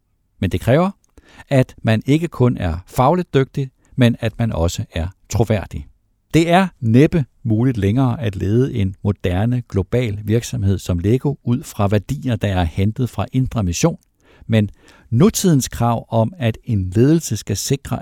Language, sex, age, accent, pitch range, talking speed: Danish, male, 60-79, native, 95-130 Hz, 155 wpm